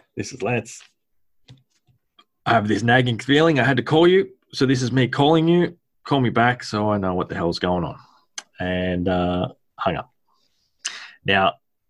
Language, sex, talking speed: English, male, 175 wpm